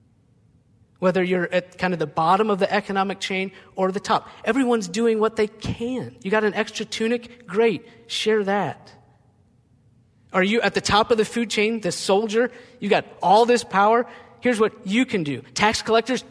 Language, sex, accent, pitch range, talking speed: English, male, American, 125-205 Hz, 185 wpm